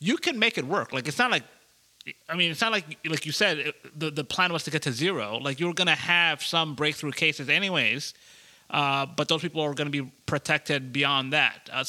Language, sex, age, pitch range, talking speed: English, male, 30-49, 140-175 Hz, 235 wpm